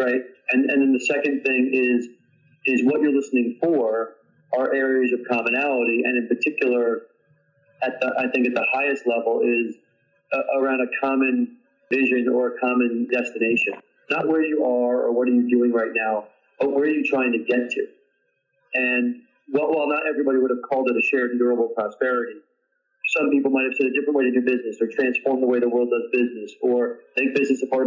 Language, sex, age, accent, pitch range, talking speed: English, male, 40-59, American, 125-145 Hz, 200 wpm